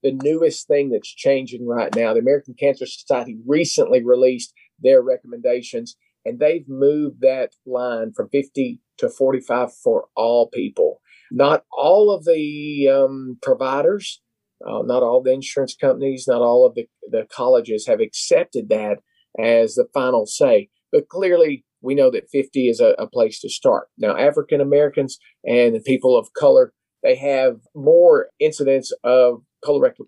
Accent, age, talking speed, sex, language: American, 40-59, 155 wpm, male, English